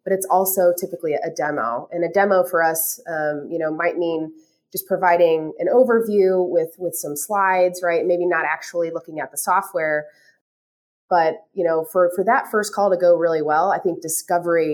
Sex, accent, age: female, American, 30-49